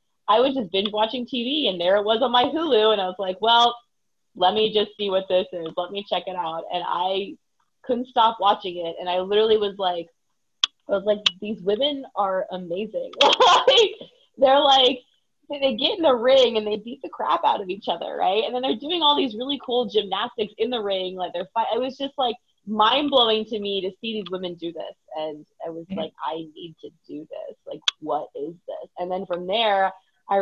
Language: English